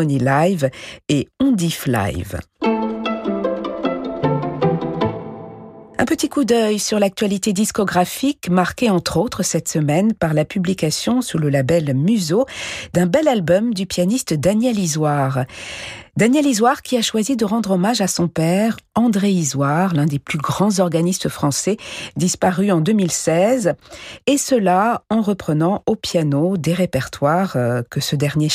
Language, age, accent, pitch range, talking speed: French, 50-69, French, 145-200 Hz, 130 wpm